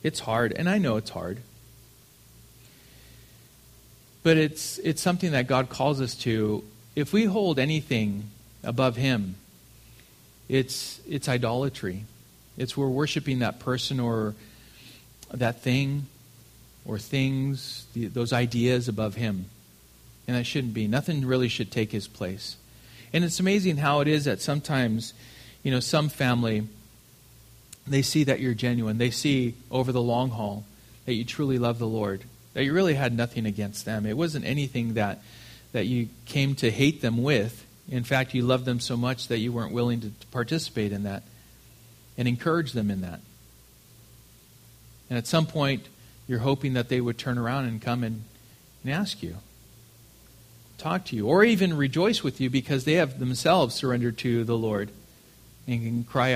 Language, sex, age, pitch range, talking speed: English, male, 40-59, 115-135 Hz, 165 wpm